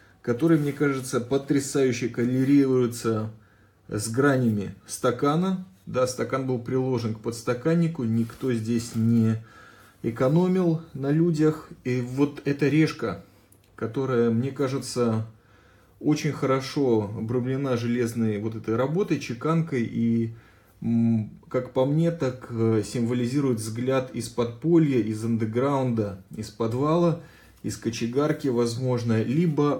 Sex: male